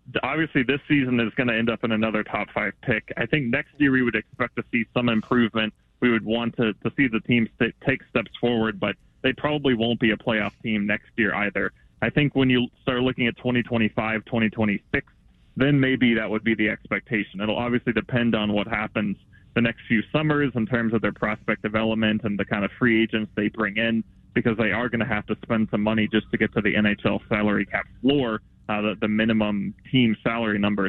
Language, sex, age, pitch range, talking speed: English, male, 20-39, 105-120 Hz, 220 wpm